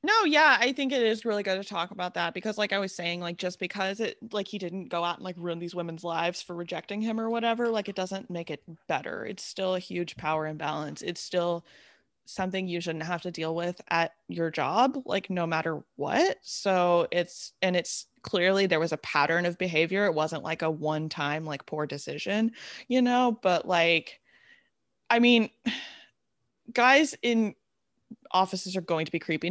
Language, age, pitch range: English, 20-39, 160-210 Hz